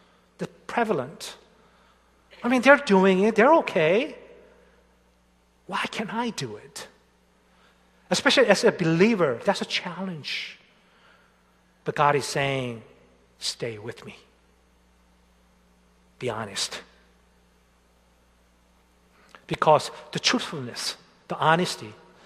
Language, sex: Korean, male